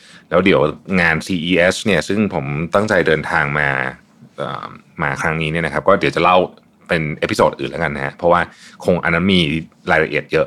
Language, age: Thai, 20-39